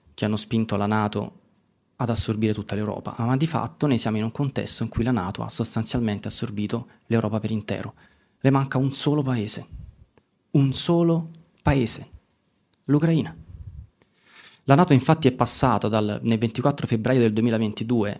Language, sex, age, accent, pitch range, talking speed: Italian, male, 20-39, native, 110-130 Hz, 150 wpm